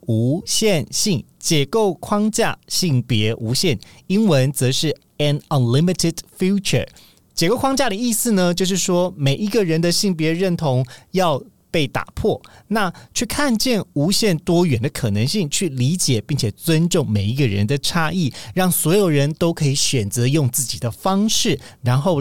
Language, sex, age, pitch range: Chinese, male, 40-59, 130-190 Hz